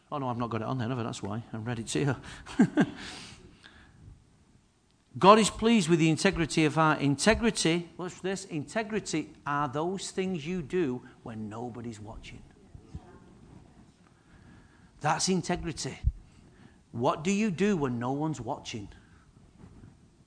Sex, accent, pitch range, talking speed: male, British, 125-180 Hz, 135 wpm